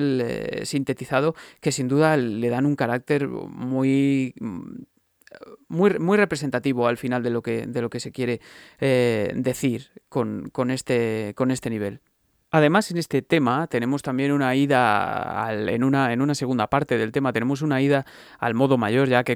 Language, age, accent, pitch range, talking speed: Spanish, 30-49, Spanish, 120-140 Hz, 160 wpm